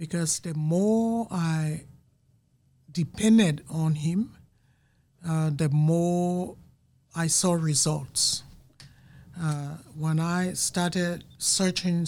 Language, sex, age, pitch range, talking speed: English, male, 60-79, 145-170 Hz, 90 wpm